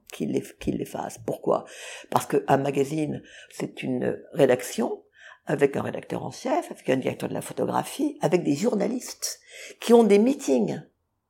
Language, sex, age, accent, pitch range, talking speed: French, female, 50-69, French, 160-240 Hz, 160 wpm